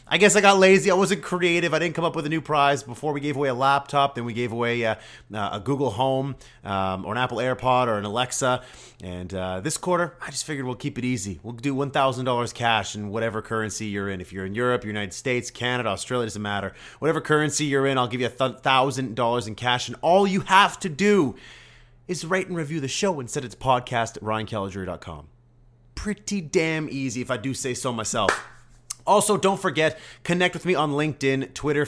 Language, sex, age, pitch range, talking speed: English, male, 30-49, 115-145 Hz, 215 wpm